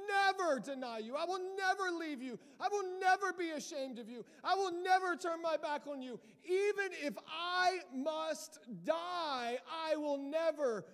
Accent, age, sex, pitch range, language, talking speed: American, 40-59, male, 260-340 Hz, English, 170 wpm